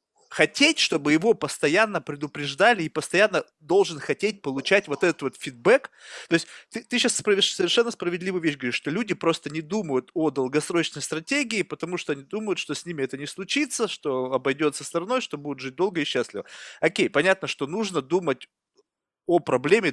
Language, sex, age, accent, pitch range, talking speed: Russian, male, 30-49, native, 150-195 Hz, 170 wpm